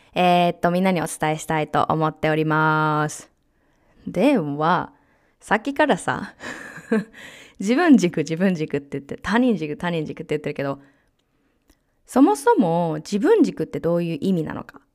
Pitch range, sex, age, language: 160-245 Hz, female, 20-39, Japanese